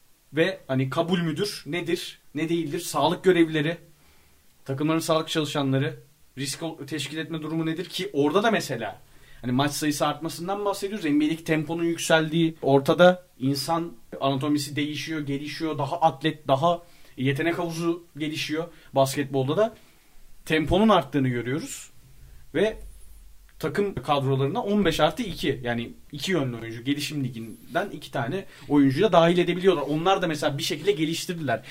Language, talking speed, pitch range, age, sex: Turkish, 130 wpm, 135-165 Hz, 30-49, male